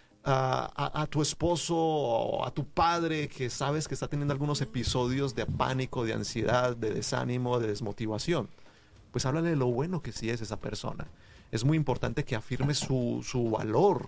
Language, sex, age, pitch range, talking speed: Spanish, male, 40-59, 120-145 Hz, 180 wpm